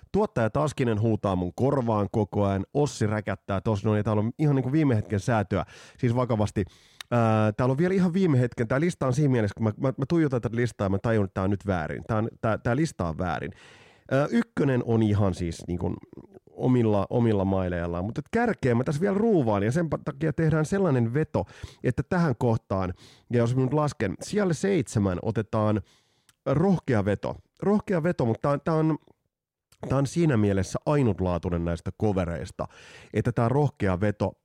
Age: 30-49